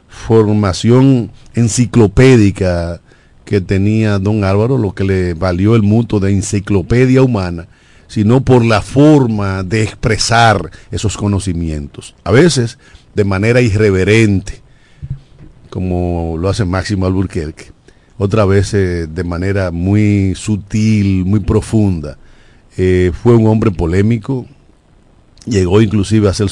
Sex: male